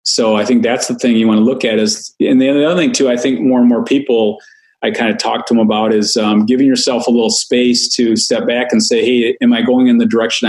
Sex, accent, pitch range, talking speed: male, American, 110-130 Hz, 280 wpm